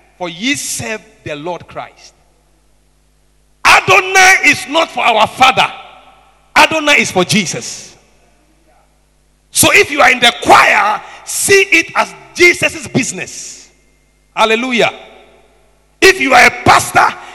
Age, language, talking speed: 50-69, English, 120 wpm